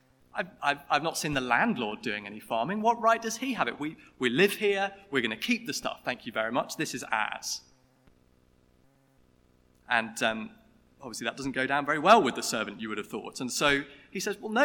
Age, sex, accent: 30-49, male, British